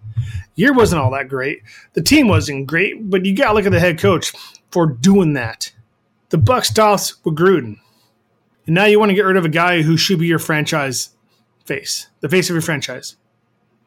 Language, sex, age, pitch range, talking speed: English, male, 30-49, 115-180 Hz, 205 wpm